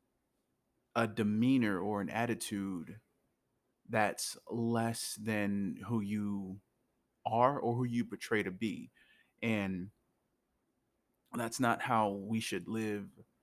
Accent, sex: American, male